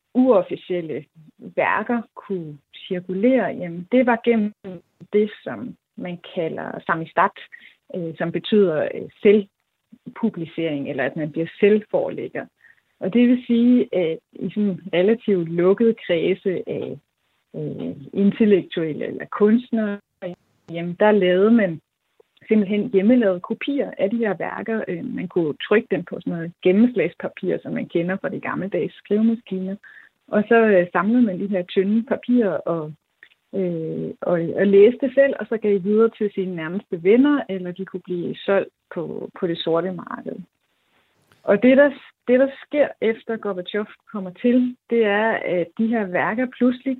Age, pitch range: 30-49, 185-235 Hz